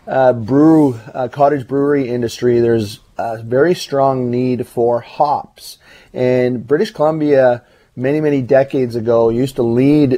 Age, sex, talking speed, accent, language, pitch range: 30-49, male, 135 wpm, American, English, 115-130 Hz